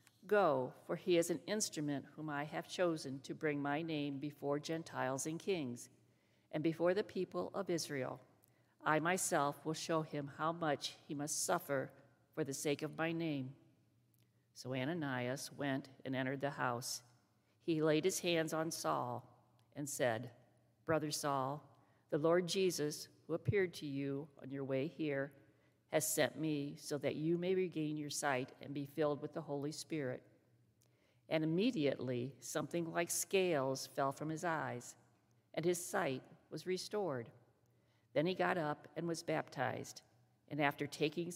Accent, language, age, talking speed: American, English, 50-69, 160 wpm